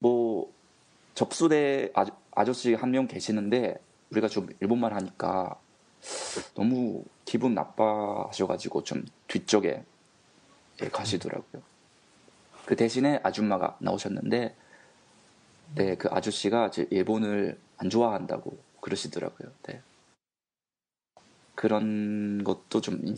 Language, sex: Japanese, male